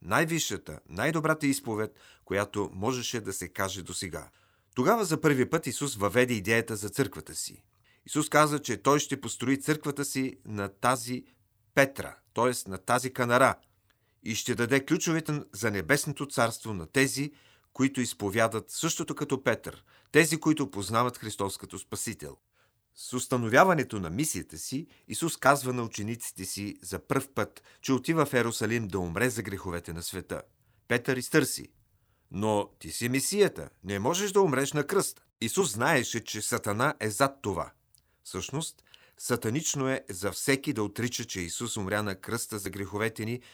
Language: Bulgarian